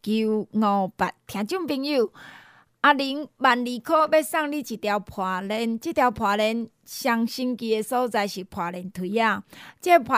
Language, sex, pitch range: Chinese, female, 210-275 Hz